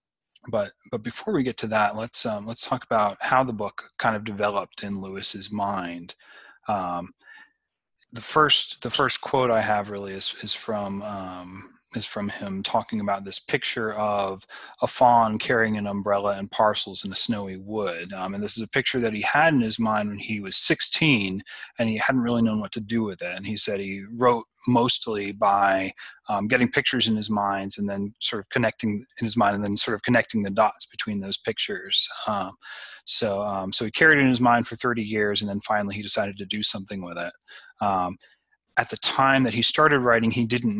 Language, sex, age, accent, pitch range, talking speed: English, male, 30-49, American, 100-115 Hz, 210 wpm